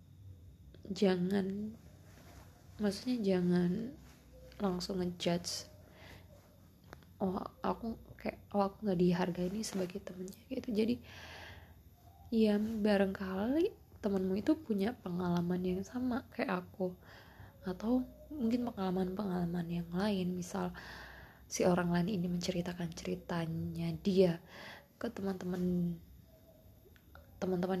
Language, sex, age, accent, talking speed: Indonesian, female, 20-39, native, 95 wpm